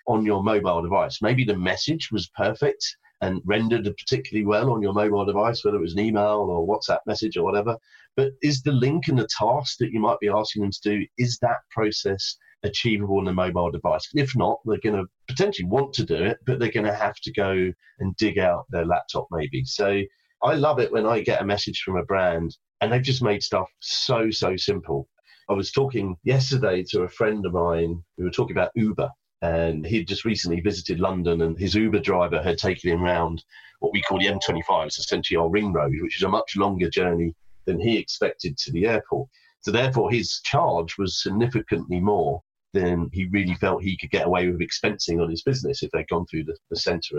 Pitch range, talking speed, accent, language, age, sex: 95-120 Hz, 210 wpm, British, English, 40-59, male